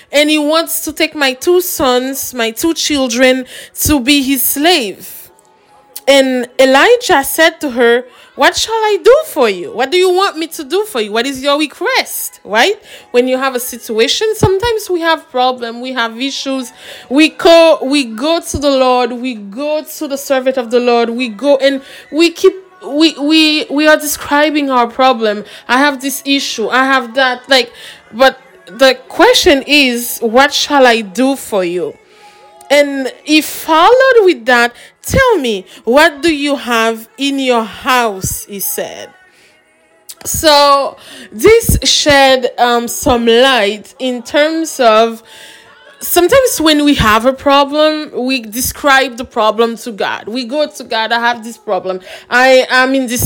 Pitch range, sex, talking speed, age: 245-310 Hz, female, 165 wpm, 20-39